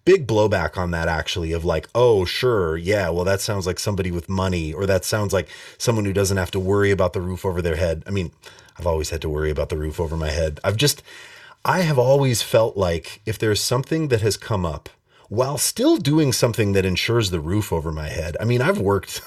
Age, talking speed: 30-49, 235 wpm